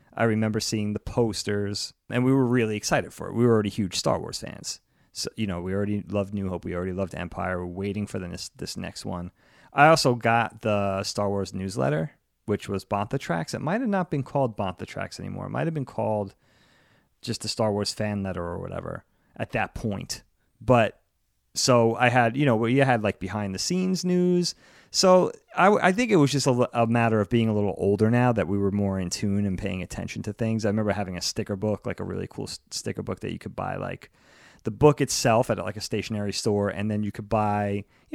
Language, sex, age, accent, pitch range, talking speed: English, male, 30-49, American, 95-115 Hz, 235 wpm